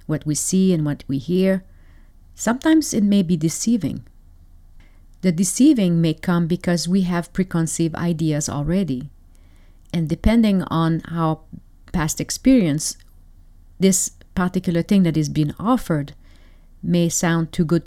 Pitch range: 145-185 Hz